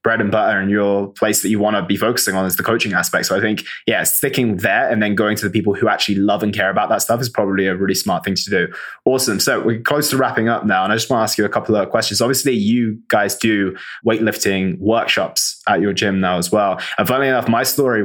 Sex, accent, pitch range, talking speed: male, British, 100-120 Hz, 270 wpm